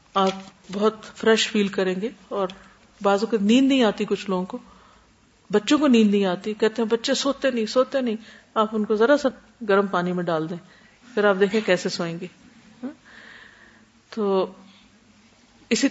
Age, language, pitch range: 50-69, Urdu, 185-225 Hz